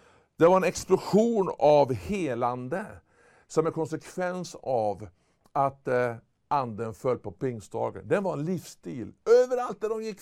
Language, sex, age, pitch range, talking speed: Swedish, male, 60-79, 130-175 Hz, 135 wpm